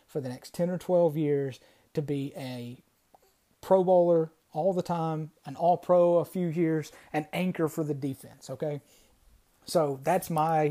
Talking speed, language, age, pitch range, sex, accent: 165 wpm, English, 30-49, 145-175 Hz, male, American